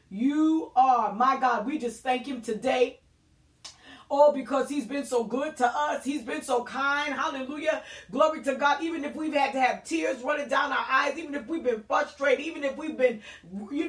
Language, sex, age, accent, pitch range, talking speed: English, female, 30-49, American, 205-285 Hz, 200 wpm